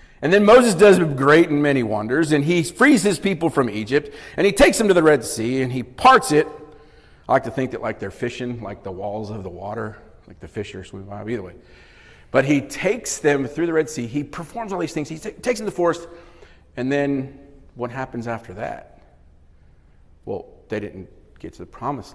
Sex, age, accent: male, 40-59, American